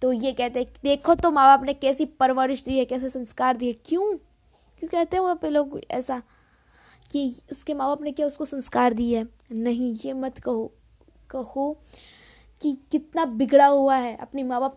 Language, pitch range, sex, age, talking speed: Hindi, 240-280 Hz, female, 20-39, 185 wpm